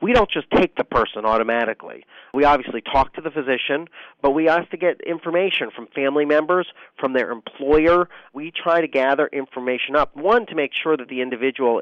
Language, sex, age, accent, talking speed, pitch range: English, male, 40-59, American, 195 wpm, 120-150 Hz